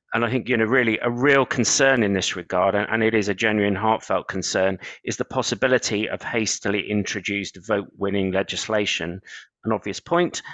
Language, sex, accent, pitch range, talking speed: English, male, British, 95-120 Hz, 175 wpm